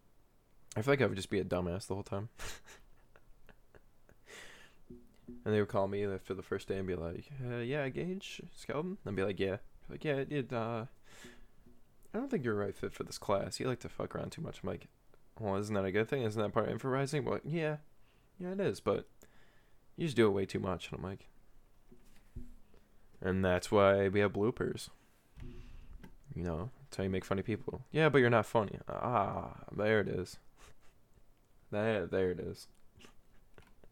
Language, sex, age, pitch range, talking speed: English, male, 20-39, 95-125 Hz, 200 wpm